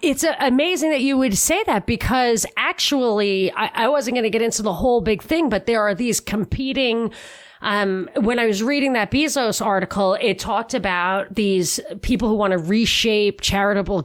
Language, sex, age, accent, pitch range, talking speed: English, female, 30-49, American, 190-255 Hz, 180 wpm